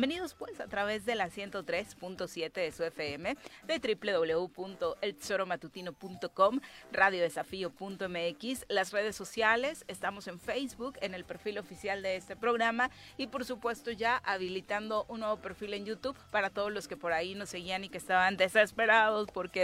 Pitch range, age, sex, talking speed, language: 170-215 Hz, 30-49, female, 150 wpm, Spanish